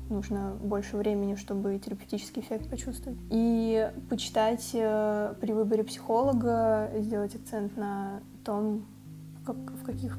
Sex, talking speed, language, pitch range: female, 110 wpm, Russian, 195-225 Hz